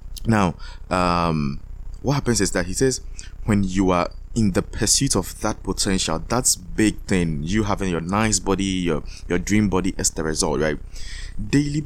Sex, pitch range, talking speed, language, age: male, 85-105 Hz, 170 wpm, English, 20-39